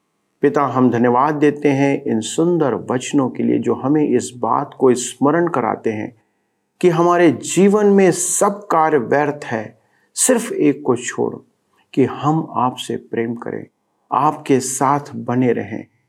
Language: Hindi